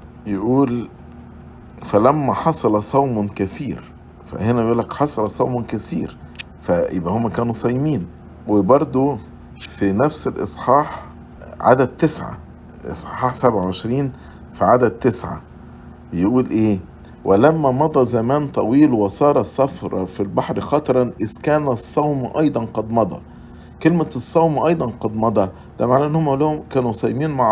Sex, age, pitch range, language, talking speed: male, 50-69, 105-135 Hz, English, 120 wpm